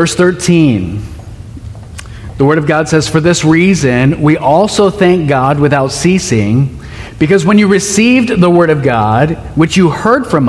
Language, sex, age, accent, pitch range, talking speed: English, male, 40-59, American, 115-180 Hz, 160 wpm